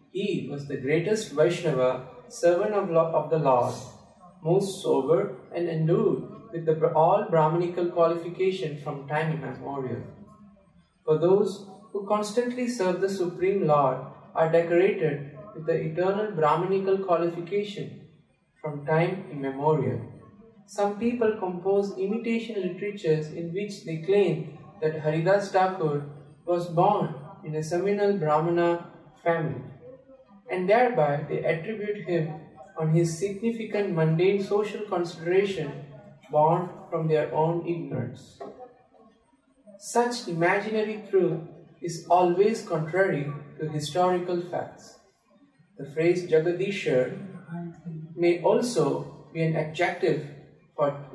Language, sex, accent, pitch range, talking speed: English, male, Indian, 155-195 Hz, 105 wpm